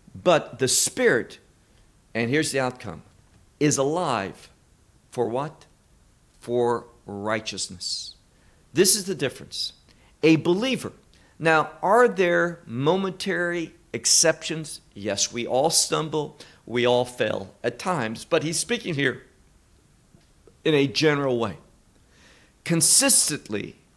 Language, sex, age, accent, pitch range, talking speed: English, male, 50-69, American, 115-180 Hz, 105 wpm